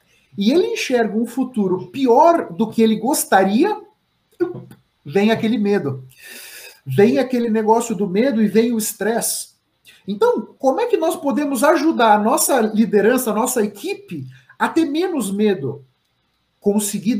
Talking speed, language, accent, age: 140 wpm, Portuguese, Brazilian, 50-69